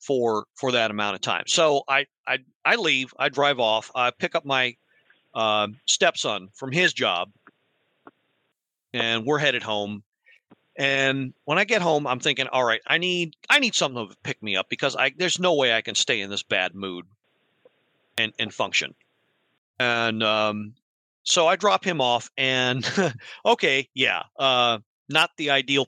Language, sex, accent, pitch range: English, male, American, 120-160 Hz